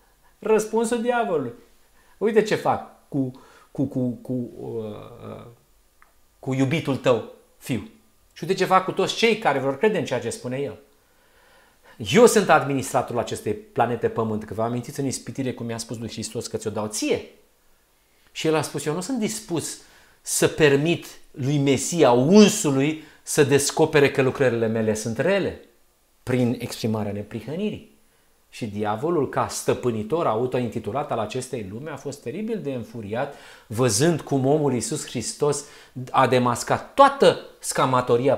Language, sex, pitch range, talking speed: Romanian, male, 115-150 Hz, 150 wpm